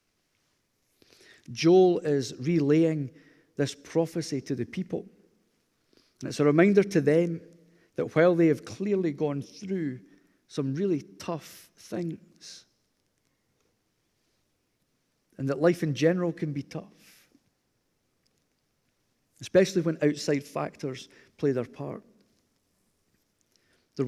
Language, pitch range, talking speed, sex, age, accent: English, 135-160 Hz, 100 wpm, male, 40-59, British